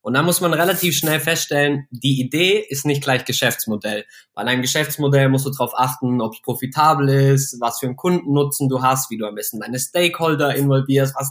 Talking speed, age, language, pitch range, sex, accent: 200 wpm, 20-39, German, 125-150 Hz, male, German